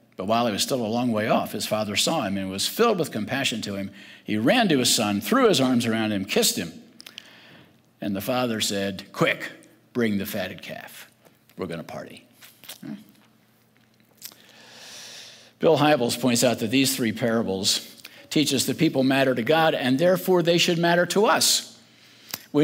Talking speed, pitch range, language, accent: 180 wpm, 110-160 Hz, English, American